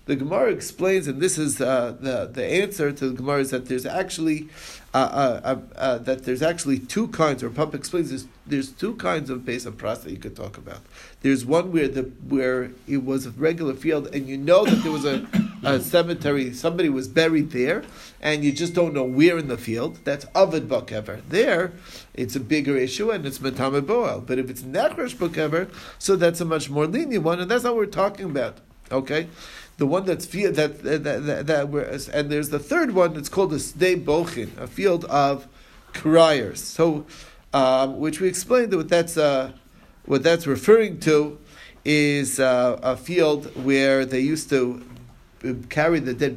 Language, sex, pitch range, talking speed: English, male, 130-165 Hz, 205 wpm